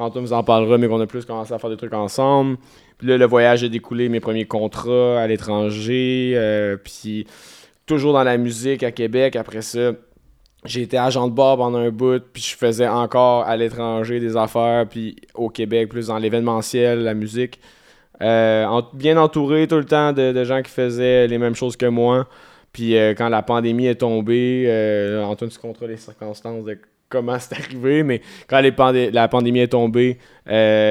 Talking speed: 200 wpm